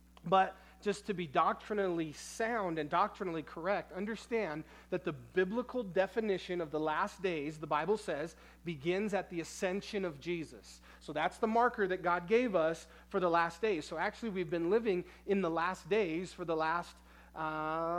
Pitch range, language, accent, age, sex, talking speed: 170-200 Hz, English, American, 30-49, male, 175 wpm